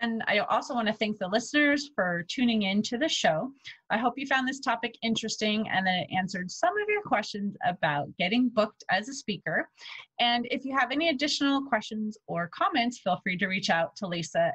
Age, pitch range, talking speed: 30-49, 180-250 Hz, 210 wpm